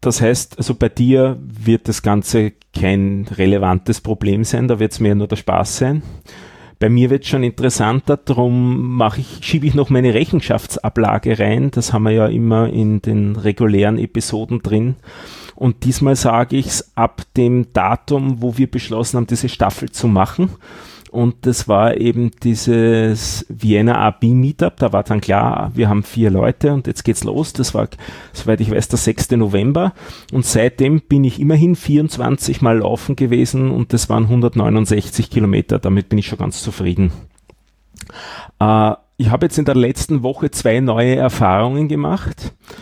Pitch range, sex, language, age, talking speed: 110-140 Hz, male, German, 30-49, 170 wpm